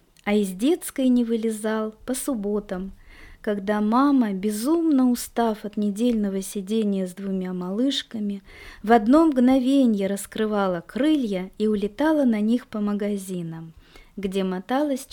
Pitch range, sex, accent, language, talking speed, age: 195-260 Hz, female, native, Russian, 120 wpm, 20-39